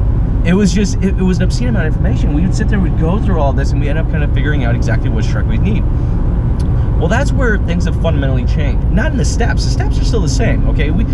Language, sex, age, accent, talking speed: English, male, 30-49, American, 275 wpm